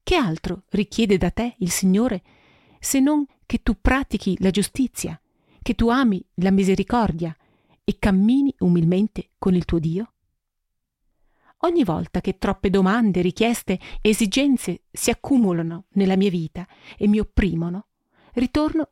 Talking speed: 135 wpm